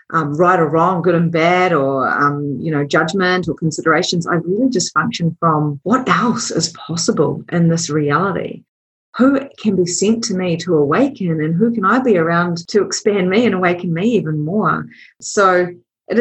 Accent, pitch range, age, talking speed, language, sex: Australian, 170-235 Hz, 30-49, 185 wpm, English, female